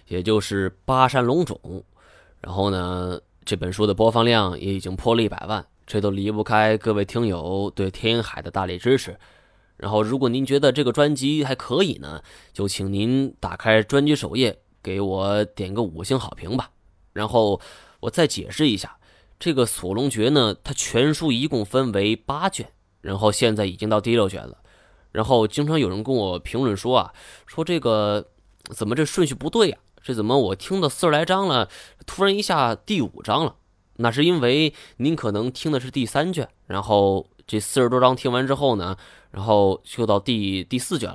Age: 20-39